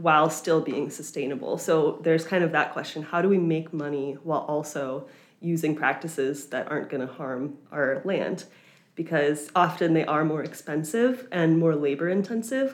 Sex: female